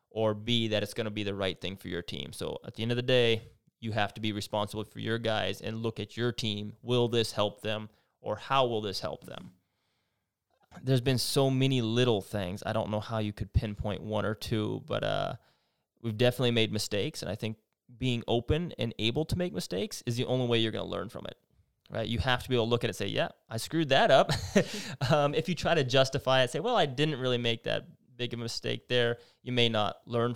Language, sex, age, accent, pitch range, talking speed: English, male, 20-39, American, 110-125 Hz, 245 wpm